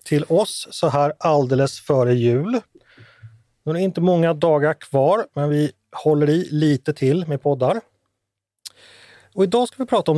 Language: Swedish